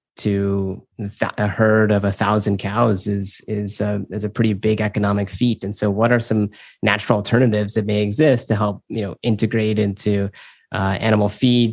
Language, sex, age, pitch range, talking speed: English, male, 20-39, 100-110 Hz, 180 wpm